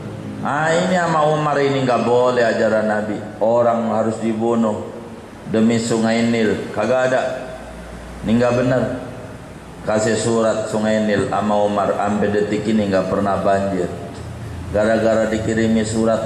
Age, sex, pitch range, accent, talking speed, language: 40-59, male, 95-115 Hz, native, 125 wpm, Indonesian